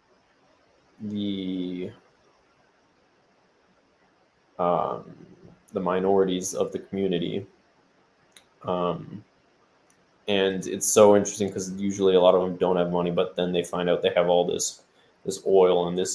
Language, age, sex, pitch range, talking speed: English, 20-39, male, 90-100 Hz, 125 wpm